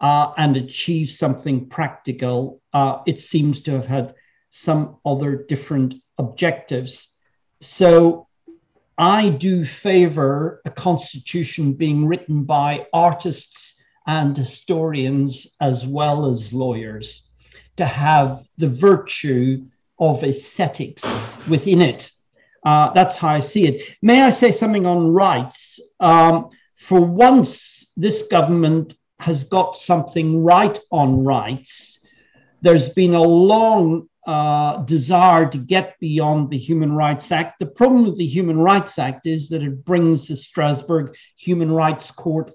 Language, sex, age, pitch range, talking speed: English, male, 50-69, 140-175 Hz, 130 wpm